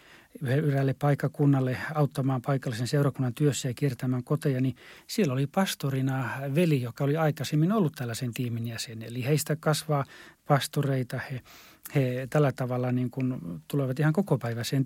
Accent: native